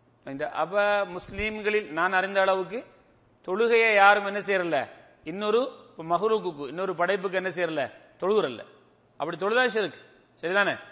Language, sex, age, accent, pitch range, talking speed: English, male, 30-49, Indian, 155-215 Hz, 115 wpm